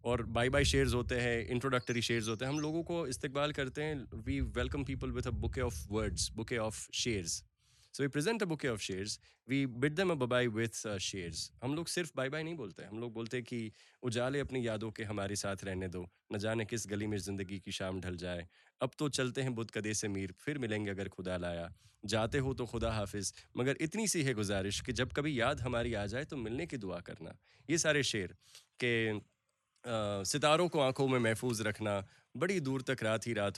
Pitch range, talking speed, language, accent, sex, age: 105-150 Hz, 155 wpm, Gujarati, native, male, 20-39